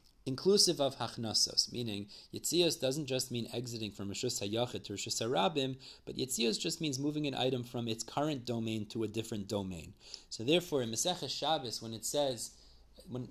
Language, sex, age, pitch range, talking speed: English, male, 30-49, 120-160 Hz, 175 wpm